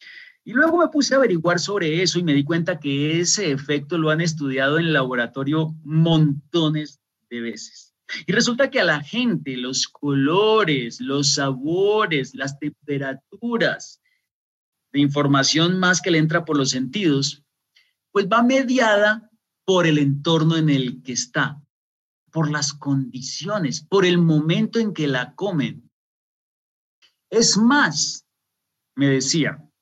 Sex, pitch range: male, 140-195 Hz